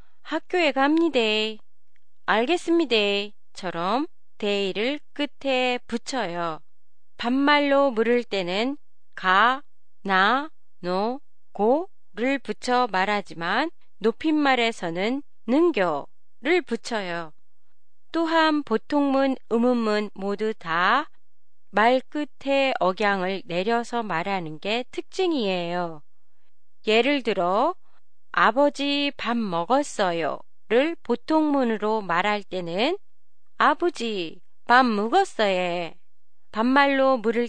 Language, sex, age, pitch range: Japanese, female, 30-49, 200-280 Hz